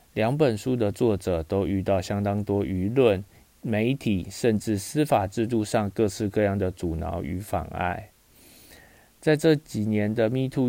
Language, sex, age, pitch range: Chinese, male, 20-39, 95-120 Hz